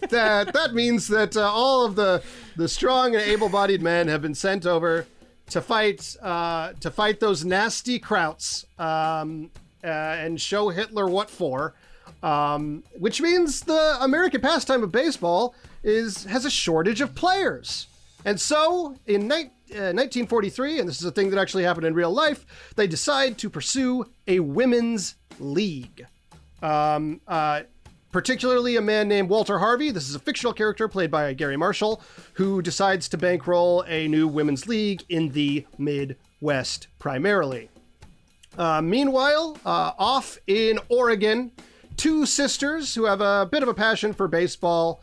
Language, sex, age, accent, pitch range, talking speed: English, male, 30-49, American, 165-235 Hz, 155 wpm